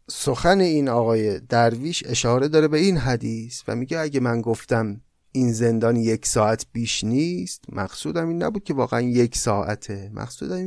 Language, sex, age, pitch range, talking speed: Persian, male, 30-49, 115-150 Hz, 155 wpm